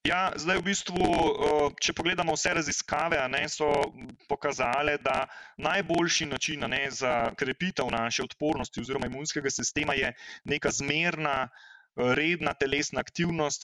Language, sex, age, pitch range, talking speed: English, male, 30-49, 140-170 Hz, 125 wpm